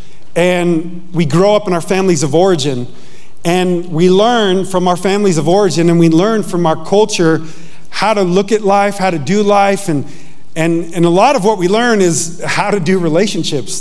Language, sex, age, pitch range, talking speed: English, male, 40-59, 165-200 Hz, 200 wpm